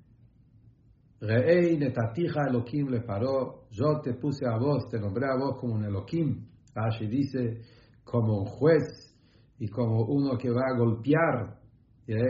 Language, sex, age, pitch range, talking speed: English, male, 60-79, 115-145 Hz, 135 wpm